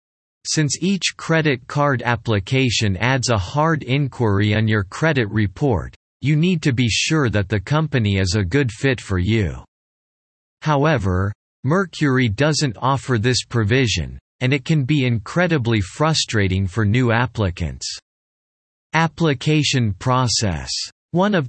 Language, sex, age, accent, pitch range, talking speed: English, male, 40-59, American, 105-140 Hz, 130 wpm